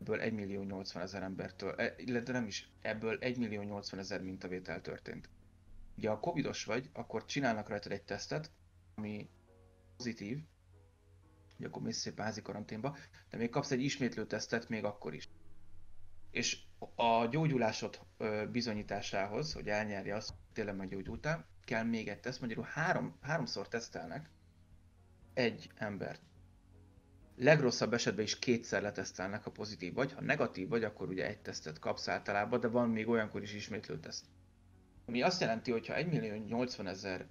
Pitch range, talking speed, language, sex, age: 90-115 Hz, 150 wpm, Hungarian, male, 30-49